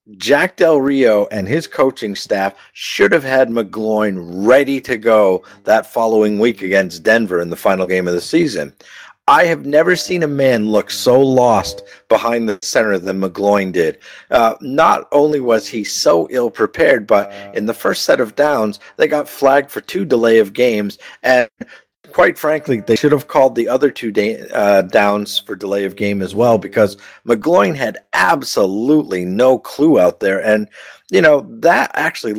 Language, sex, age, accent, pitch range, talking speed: English, male, 50-69, American, 100-130 Hz, 175 wpm